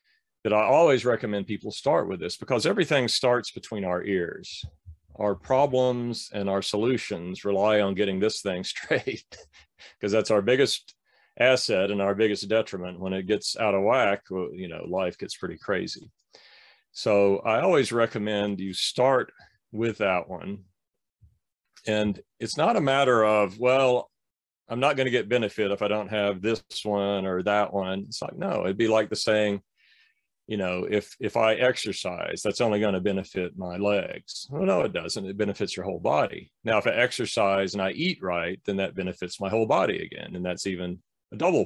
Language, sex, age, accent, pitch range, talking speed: English, male, 40-59, American, 95-115 Hz, 185 wpm